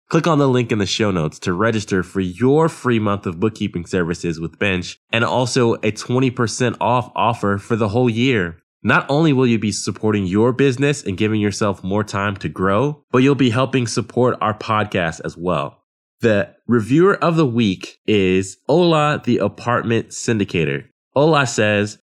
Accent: American